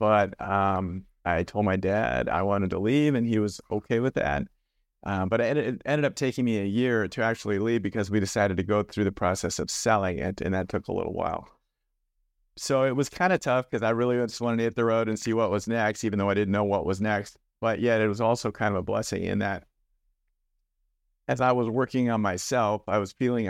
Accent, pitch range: American, 100-120 Hz